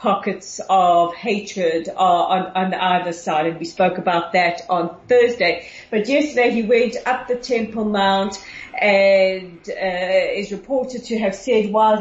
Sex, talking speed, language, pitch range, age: female, 150 wpm, English, 190-240 Hz, 40-59